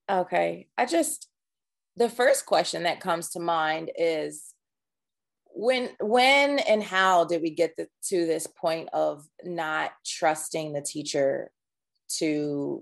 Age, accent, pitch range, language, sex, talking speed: 30-49, American, 160-205 Hz, English, female, 125 wpm